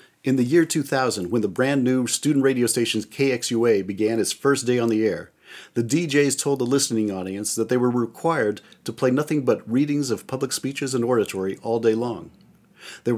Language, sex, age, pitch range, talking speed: English, male, 40-59, 110-135 Hz, 195 wpm